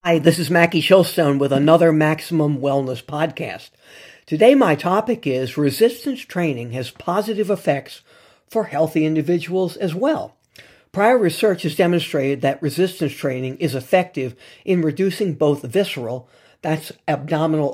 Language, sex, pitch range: English, male, 140-185 Hz